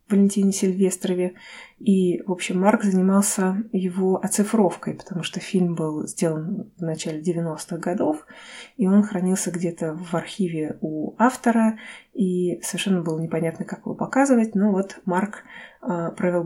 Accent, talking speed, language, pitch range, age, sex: native, 135 wpm, Russian, 175-210 Hz, 20-39, female